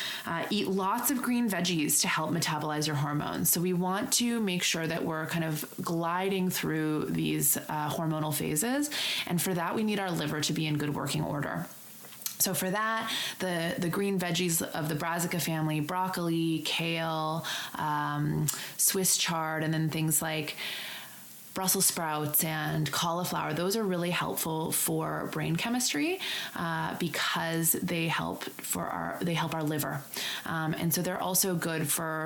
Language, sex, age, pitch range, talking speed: English, female, 20-39, 155-180 Hz, 165 wpm